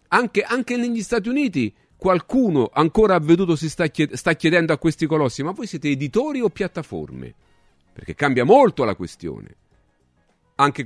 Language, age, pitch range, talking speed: Italian, 40-59, 125-190 Hz, 155 wpm